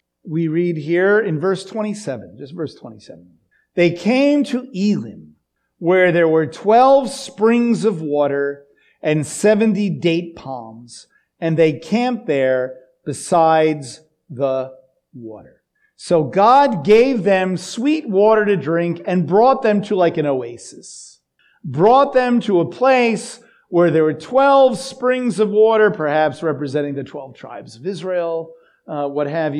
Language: English